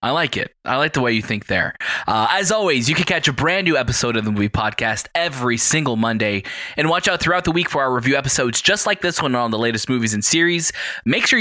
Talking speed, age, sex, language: 260 wpm, 20-39, male, English